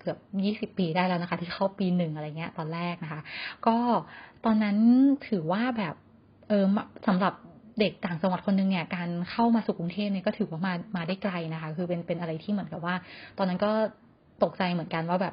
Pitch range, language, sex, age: 175-210 Hz, Thai, female, 20-39